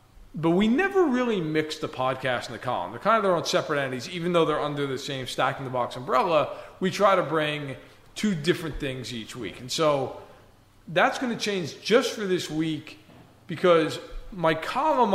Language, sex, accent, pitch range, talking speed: English, male, American, 130-165 Hz, 185 wpm